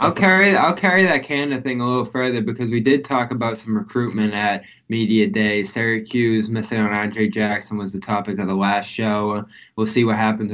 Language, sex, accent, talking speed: English, male, American, 205 wpm